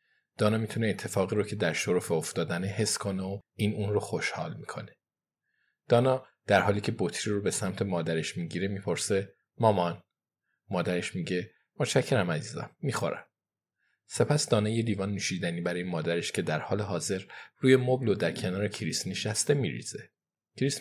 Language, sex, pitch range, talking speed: Persian, male, 95-120 Hz, 145 wpm